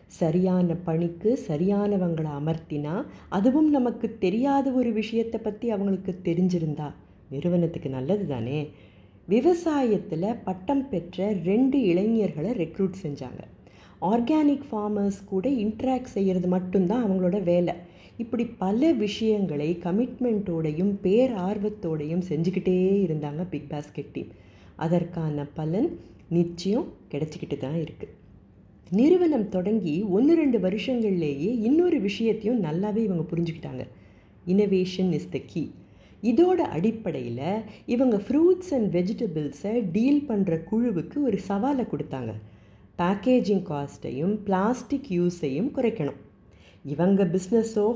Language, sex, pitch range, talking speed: Tamil, female, 155-225 Hz, 100 wpm